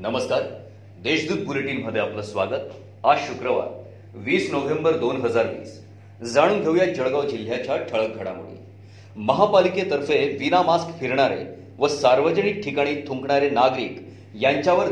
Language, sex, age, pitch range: Marathi, male, 40-59, 110-165 Hz